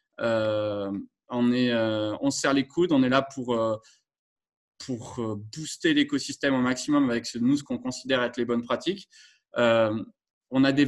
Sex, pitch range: male, 120-165 Hz